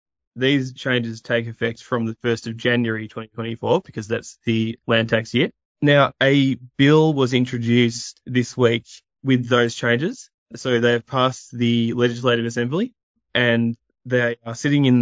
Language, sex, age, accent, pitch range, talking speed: English, male, 20-39, Australian, 115-130 Hz, 150 wpm